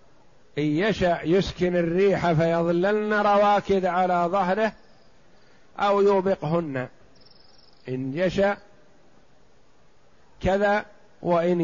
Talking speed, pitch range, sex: 70 wpm, 160-195 Hz, male